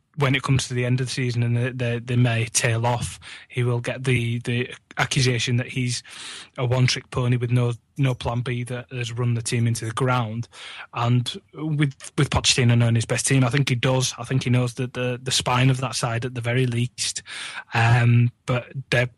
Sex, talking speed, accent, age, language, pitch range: male, 220 wpm, British, 20-39, English, 120-130 Hz